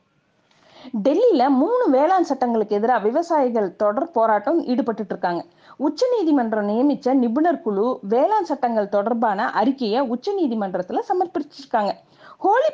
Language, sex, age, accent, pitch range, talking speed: Tamil, female, 30-49, native, 215-310 Hz, 90 wpm